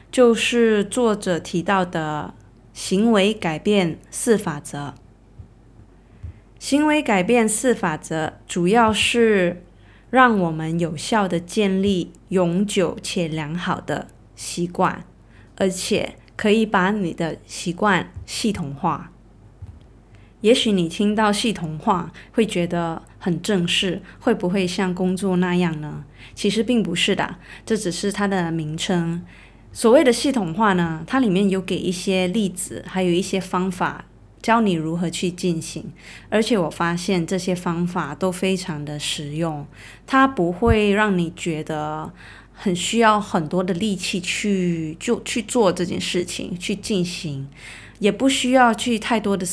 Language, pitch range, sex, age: Chinese, 165-210 Hz, female, 20-39